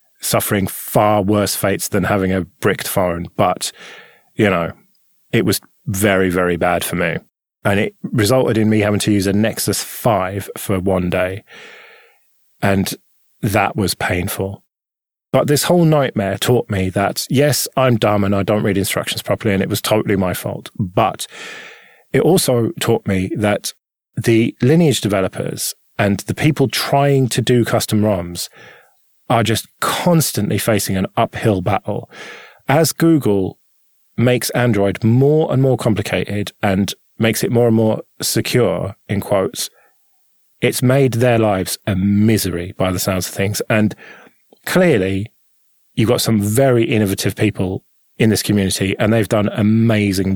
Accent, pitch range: British, 95-120 Hz